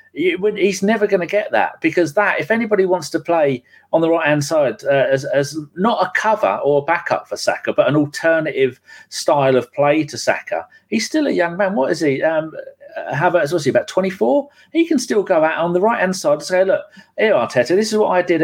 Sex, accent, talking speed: male, British, 225 wpm